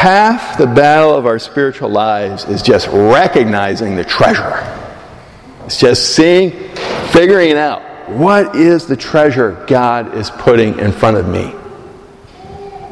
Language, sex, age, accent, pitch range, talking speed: English, male, 50-69, American, 115-155 Hz, 130 wpm